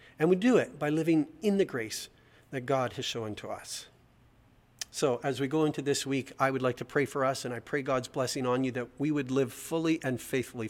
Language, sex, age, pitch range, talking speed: English, male, 40-59, 120-140 Hz, 240 wpm